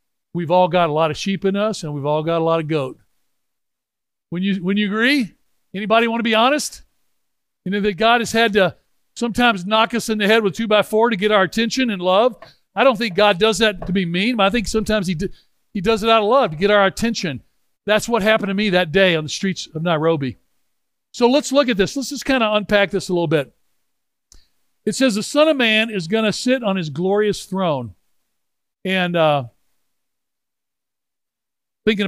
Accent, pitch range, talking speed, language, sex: American, 170-215 Hz, 220 wpm, English, male